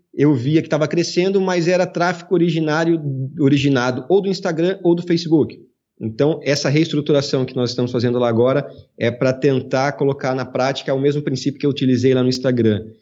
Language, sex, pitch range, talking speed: Portuguese, male, 120-145 Hz, 185 wpm